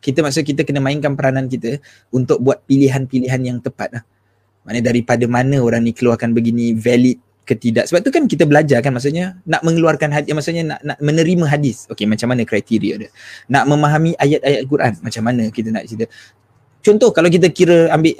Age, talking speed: 20-39, 185 wpm